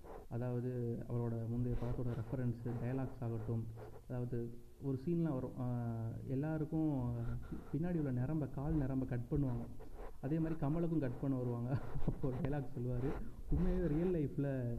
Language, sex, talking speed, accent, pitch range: Tamil, male, 130 wpm, native, 120-150 Hz